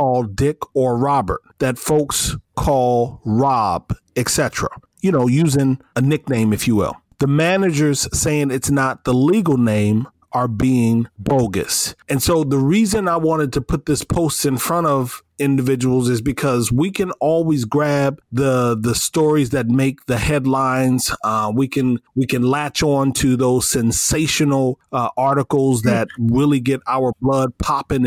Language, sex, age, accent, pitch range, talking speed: English, male, 40-59, American, 125-145 Hz, 155 wpm